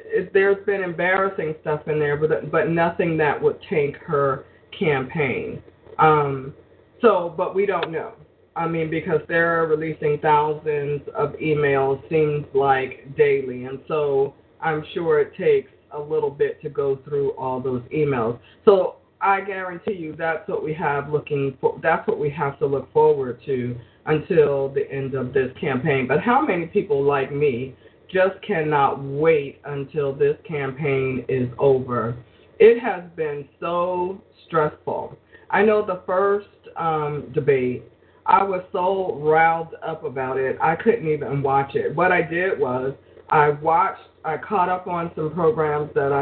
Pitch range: 140-185 Hz